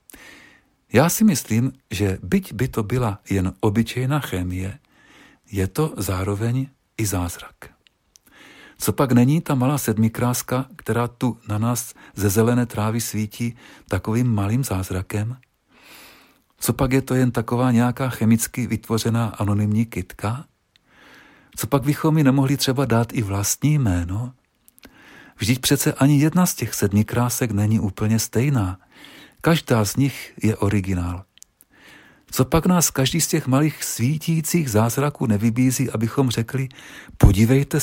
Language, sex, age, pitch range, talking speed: Czech, male, 50-69, 105-135 Hz, 130 wpm